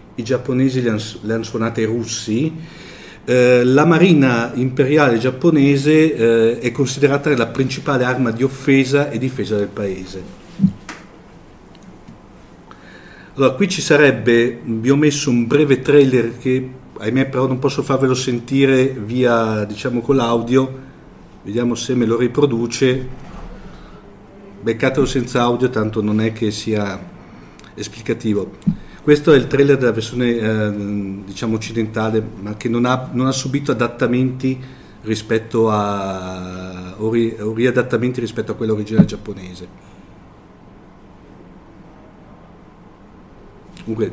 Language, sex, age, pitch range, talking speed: Italian, male, 50-69, 110-135 Hz, 120 wpm